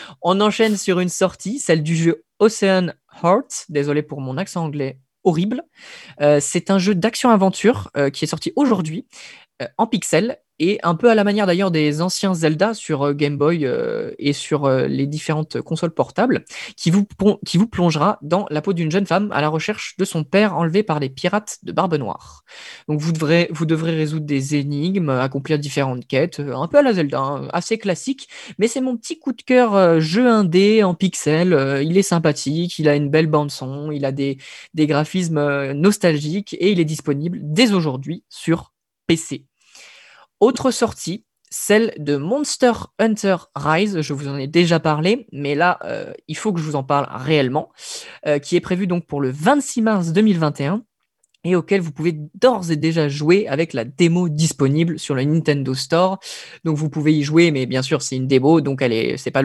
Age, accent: 20-39, French